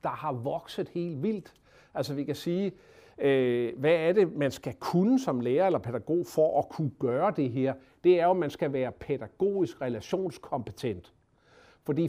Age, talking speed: 60-79, 180 wpm